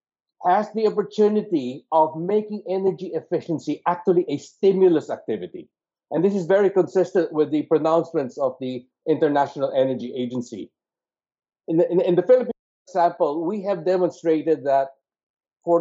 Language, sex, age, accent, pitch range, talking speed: English, male, 50-69, Filipino, 150-195 Hz, 135 wpm